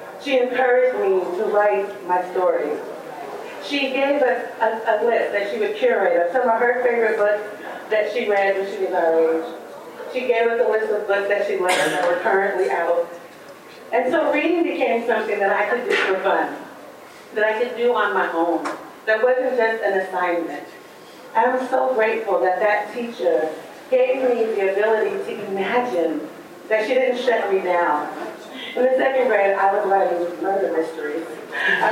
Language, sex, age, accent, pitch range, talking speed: English, female, 30-49, American, 180-240 Hz, 180 wpm